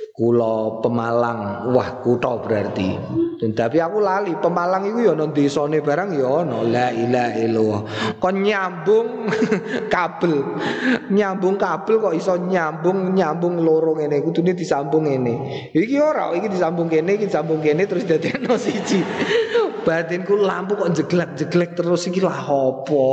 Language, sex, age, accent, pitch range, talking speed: Indonesian, male, 30-49, native, 140-195 Hz, 135 wpm